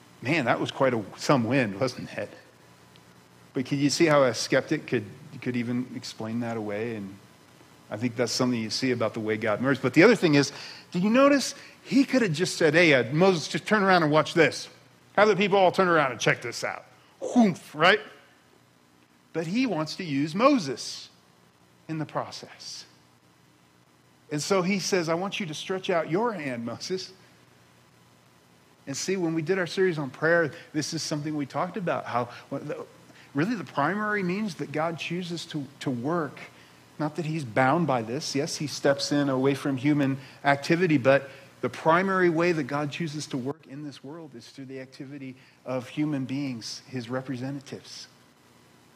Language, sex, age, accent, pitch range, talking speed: English, male, 40-59, American, 115-165 Hz, 185 wpm